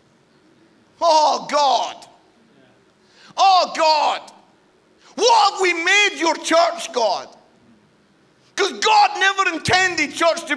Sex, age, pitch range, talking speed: male, 50-69, 200-315 Hz, 95 wpm